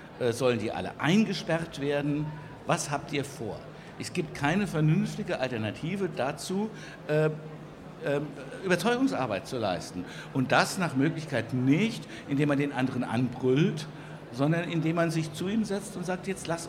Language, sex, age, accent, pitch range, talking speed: German, male, 60-79, German, 130-165 Hz, 145 wpm